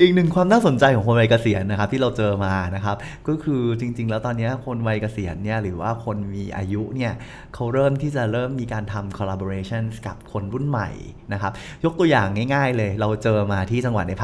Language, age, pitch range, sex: Thai, 20-39, 100-125 Hz, male